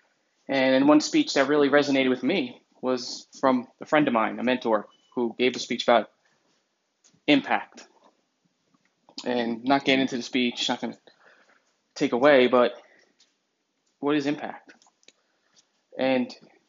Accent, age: American, 20-39